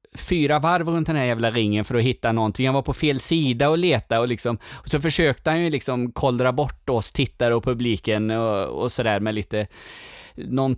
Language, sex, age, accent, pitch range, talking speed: Swedish, male, 20-39, native, 105-140 Hz, 210 wpm